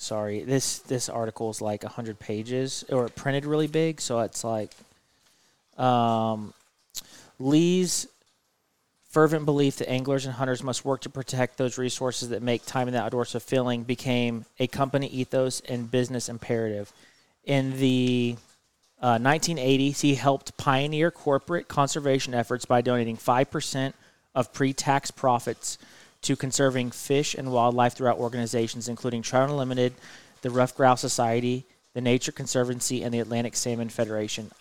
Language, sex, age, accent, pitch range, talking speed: English, male, 30-49, American, 120-135 Hz, 140 wpm